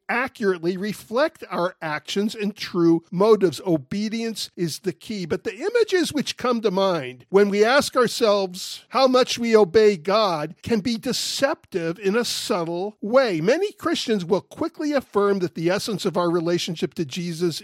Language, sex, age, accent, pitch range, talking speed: English, male, 50-69, American, 180-235 Hz, 160 wpm